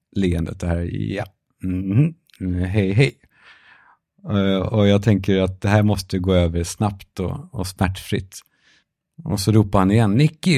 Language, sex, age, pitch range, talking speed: Swedish, male, 50-69, 95-120 Hz, 155 wpm